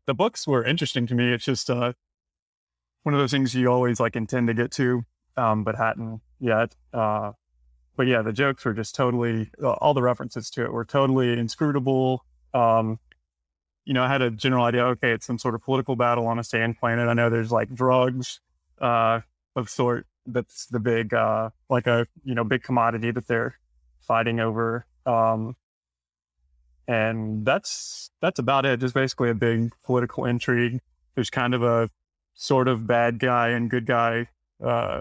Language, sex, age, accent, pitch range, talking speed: English, male, 20-39, American, 110-125 Hz, 180 wpm